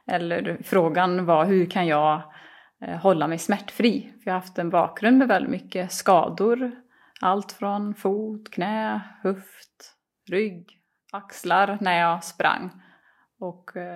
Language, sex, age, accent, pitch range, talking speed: Swedish, female, 30-49, native, 175-215 Hz, 130 wpm